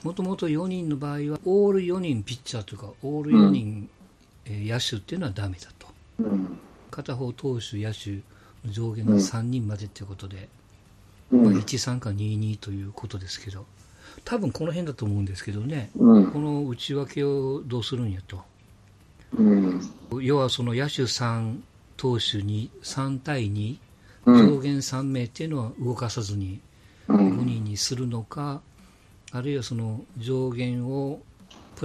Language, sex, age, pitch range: Japanese, male, 50-69, 100-130 Hz